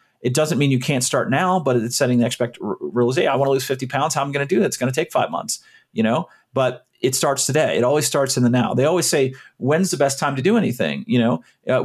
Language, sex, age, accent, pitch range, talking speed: English, male, 40-59, American, 115-140 Hz, 300 wpm